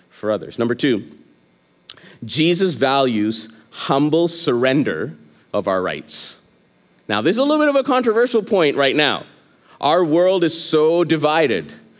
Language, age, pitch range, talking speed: English, 40-59, 125-165 Hz, 140 wpm